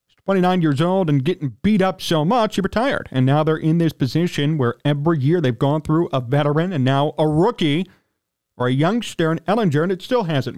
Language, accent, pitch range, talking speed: English, American, 150-215 Hz, 215 wpm